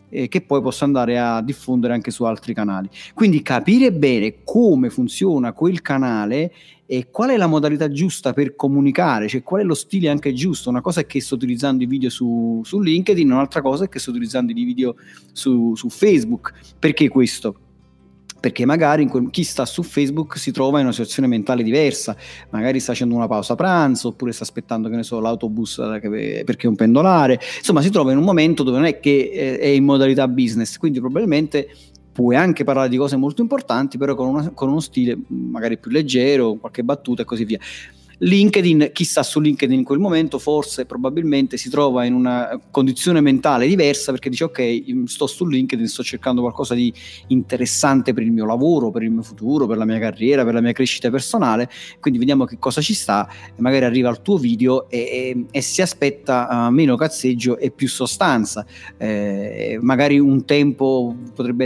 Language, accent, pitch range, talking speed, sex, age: Italian, native, 120-150 Hz, 190 wpm, male, 30-49